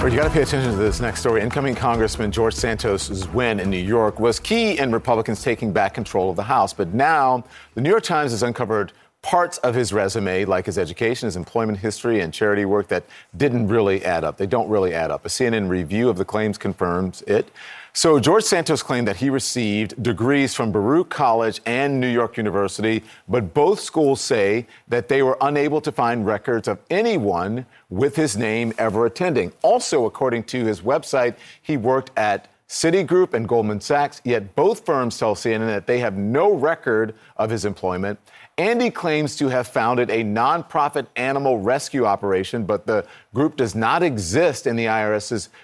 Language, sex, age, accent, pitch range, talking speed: English, male, 40-59, American, 105-135 Hz, 190 wpm